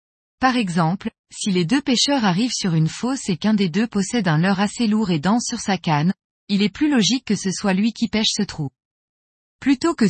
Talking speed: 225 wpm